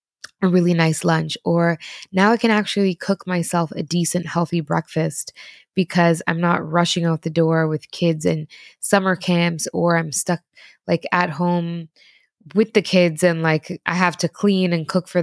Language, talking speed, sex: English, 175 wpm, female